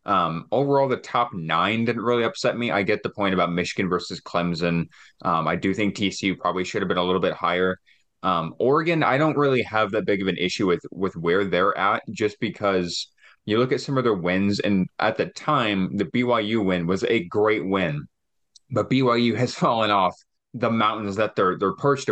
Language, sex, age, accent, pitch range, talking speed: English, male, 20-39, American, 85-110 Hz, 210 wpm